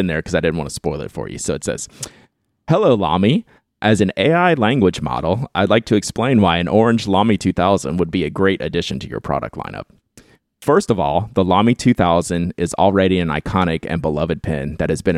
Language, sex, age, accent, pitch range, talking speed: English, male, 30-49, American, 85-105 Hz, 220 wpm